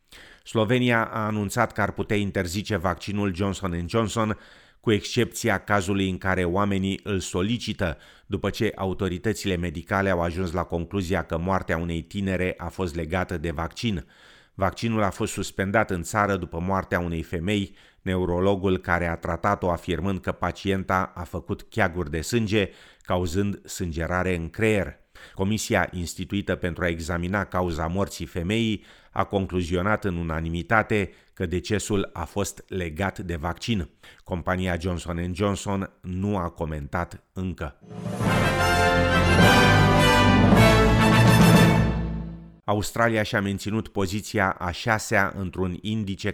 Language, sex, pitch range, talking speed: Romanian, male, 90-105 Hz, 125 wpm